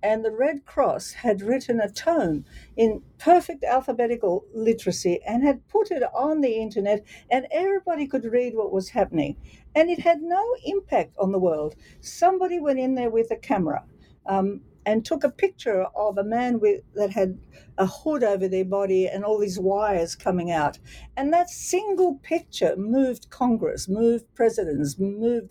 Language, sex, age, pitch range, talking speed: English, female, 60-79, 200-285 Hz, 165 wpm